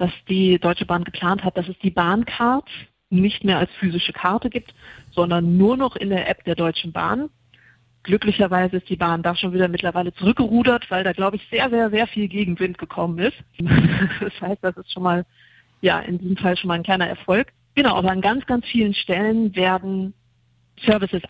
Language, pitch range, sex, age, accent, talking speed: German, 180-215 Hz, female, 30-49, German, 195 wpm